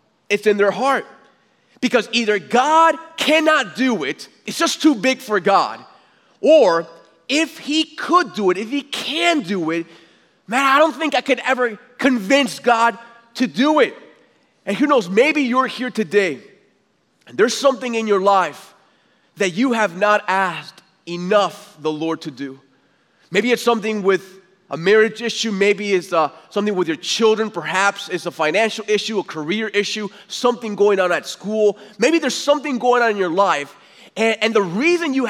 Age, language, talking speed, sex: 30-49, English, 170 wpm, male